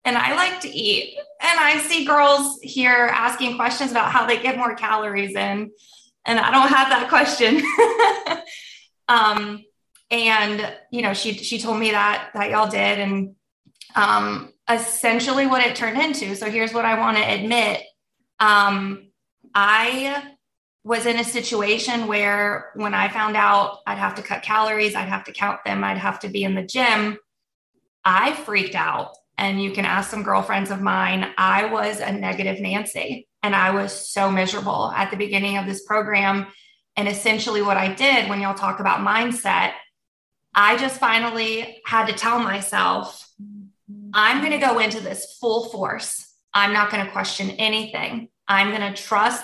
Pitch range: 200-235 Hz